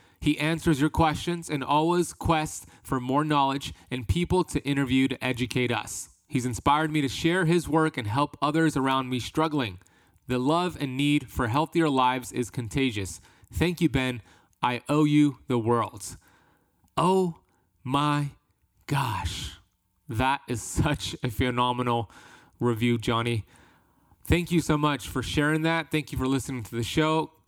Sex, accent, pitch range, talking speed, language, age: male, American, 120-155 Hz, 155 wpm, English, 20-39